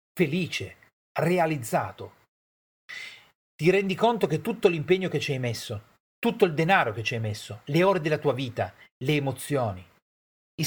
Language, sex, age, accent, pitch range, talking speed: Italian, male, 40-59, native, 115-185 Hz, 150 wpm